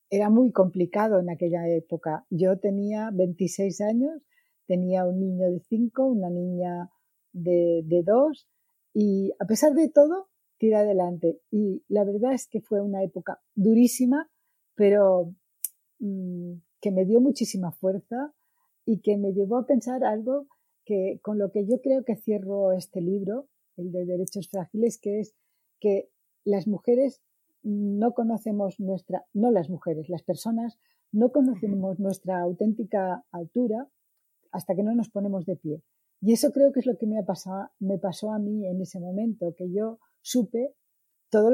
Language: Spanish